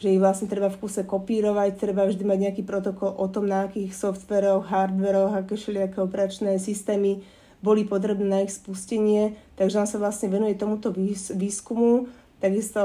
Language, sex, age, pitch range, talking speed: Slovak, female, 20-39, 190-205 Hz, 165 wpm